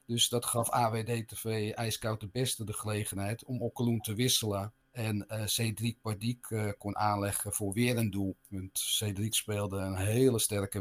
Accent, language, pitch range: Dutch, Dutch, 100-115 Hz